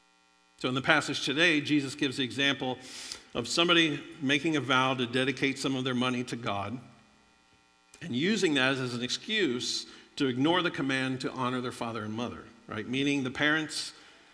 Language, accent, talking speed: English, American, 175 wpm